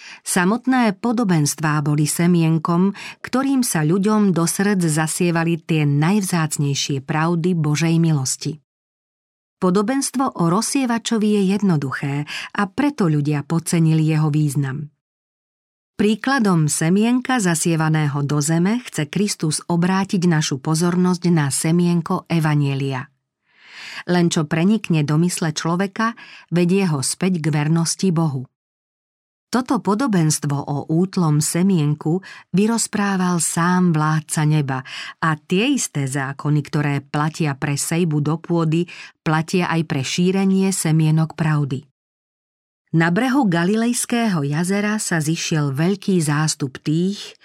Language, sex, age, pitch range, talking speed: Slovak, female, 40-59, 150-195 Hz, 105 wpm